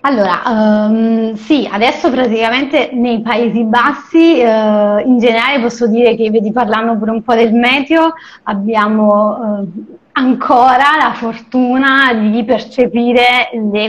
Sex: female